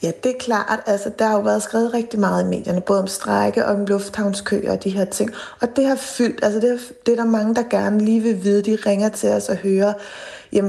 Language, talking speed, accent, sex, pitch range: Danish, 260 wpm, native, female, 185-215 Hz